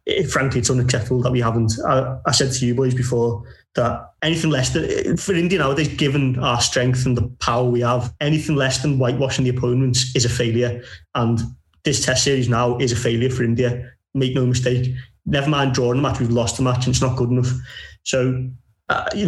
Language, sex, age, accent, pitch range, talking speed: English, male, 20-39, British, 125-145 Hz, 210 wpm